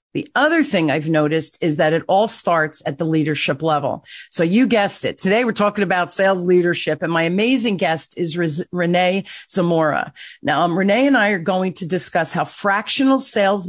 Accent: American